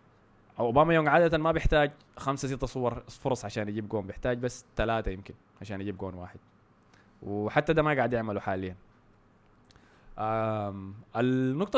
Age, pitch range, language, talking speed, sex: 20-39, 105-135 Hz, Arabic, 140 wpm, male